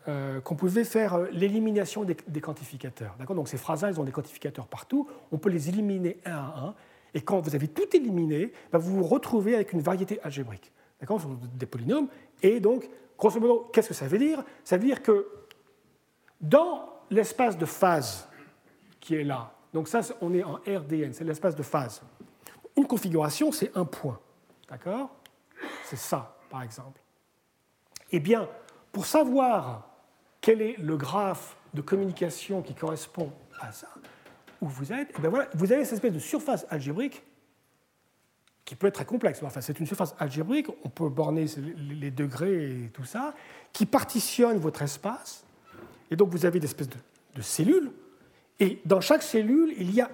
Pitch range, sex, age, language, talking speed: 155-240 Hz, male, 40-59, French, 175 wpm